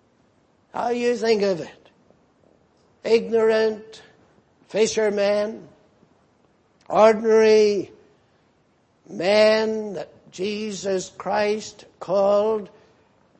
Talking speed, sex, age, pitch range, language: 60 wpm, male, 60-79, 200-245 Hz, English